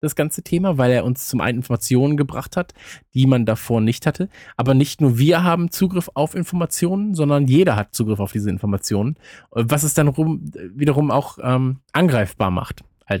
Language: German